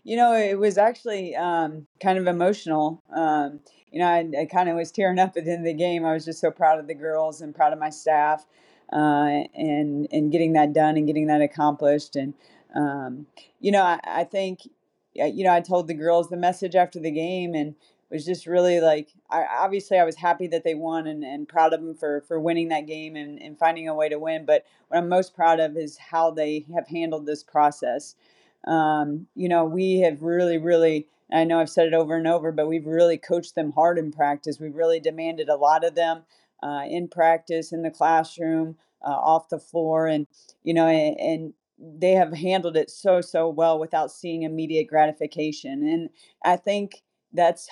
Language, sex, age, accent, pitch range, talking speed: English, female, 30-49, American, 155-175 Hz, 210 wpm